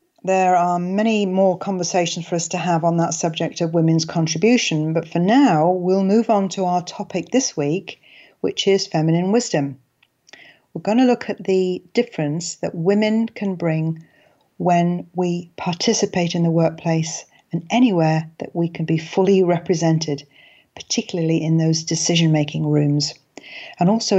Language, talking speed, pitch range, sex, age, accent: English, 155 wpm, 160-190 Hz, female, 40-59, British